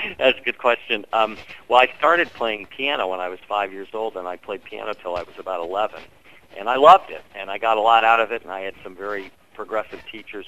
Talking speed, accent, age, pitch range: 250 wpm, American, 50-69, 95-115 Hz